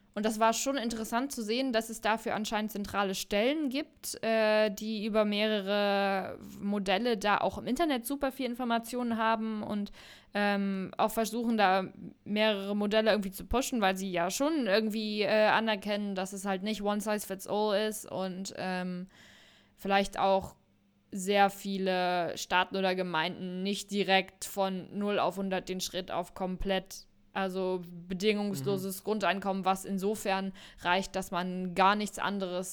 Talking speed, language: 150 wpm, German